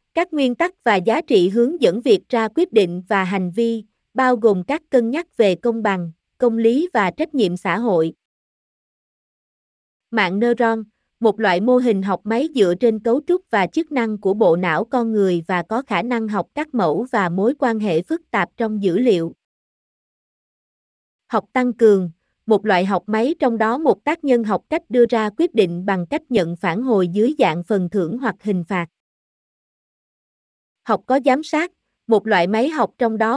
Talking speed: 190 wpm